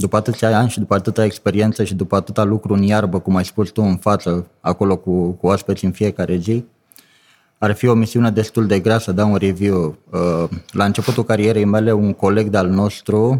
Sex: male